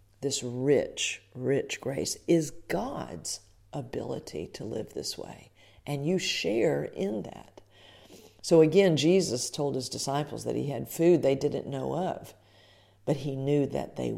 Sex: female